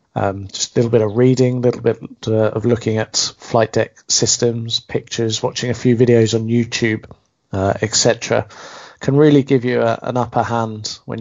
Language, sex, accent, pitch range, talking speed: English, male, British, 110-130 Hz, 180 wpm